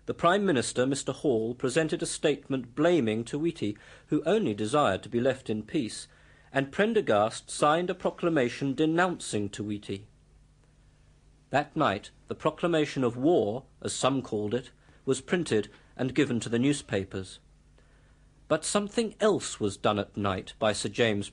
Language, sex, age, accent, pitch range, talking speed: English, male, 50-69, British, 110-155 Hz, 145 wpm